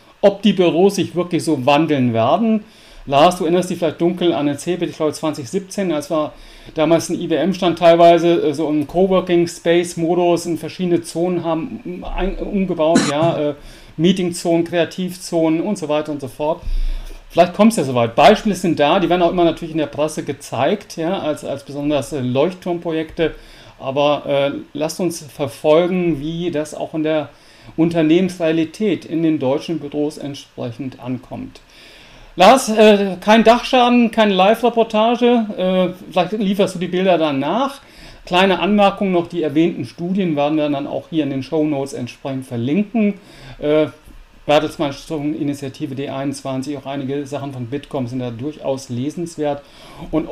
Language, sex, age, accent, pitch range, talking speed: English, male, 40-59, German, 150-185 Hz, 145 wpm